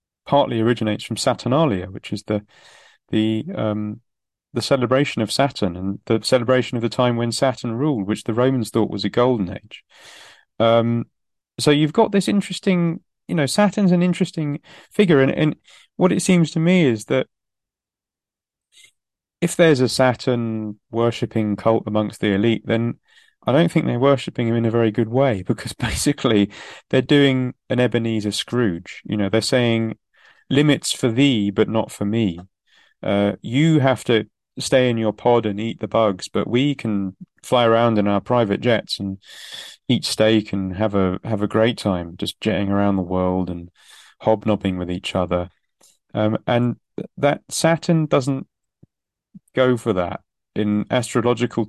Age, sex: 30-49, male